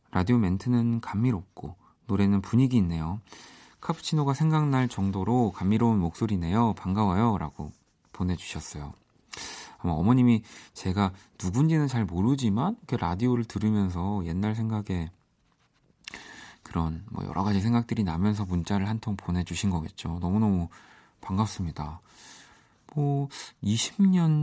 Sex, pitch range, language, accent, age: male, 90-120 Hz, Korean, native, 40-59